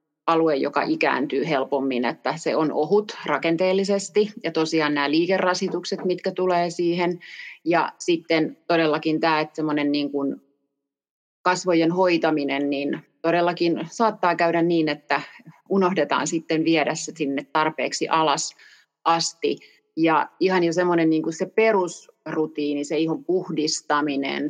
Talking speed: 120 wpm